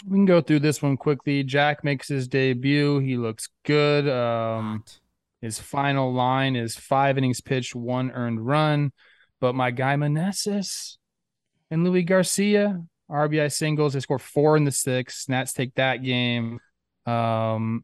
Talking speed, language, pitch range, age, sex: 150 wpm, English, 110-145 Hz, 20-39, male